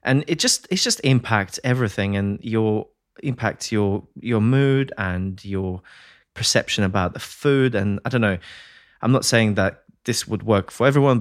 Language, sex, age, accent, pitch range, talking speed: English, male, 20-39, British, 100-125 Hz, 170 wpm